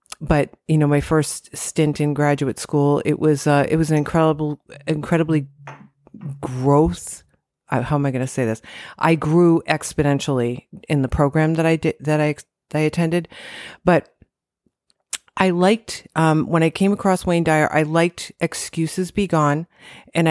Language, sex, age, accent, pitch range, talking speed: English, female, 40-59, American, 150-180 Hz, 165 wpm